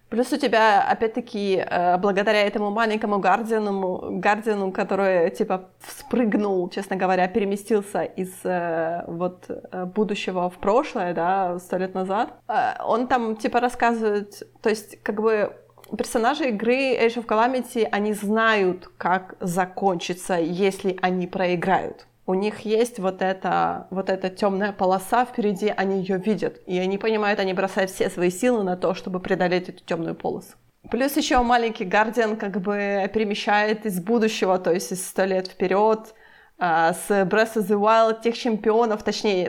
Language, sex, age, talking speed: Ukrainian, female, 20-39, 140 wpm